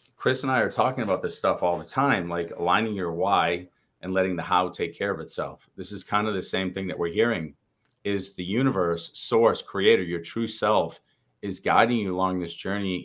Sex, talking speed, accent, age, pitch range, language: male, 215 wpm, American, 30-49, 85-100 Hz, English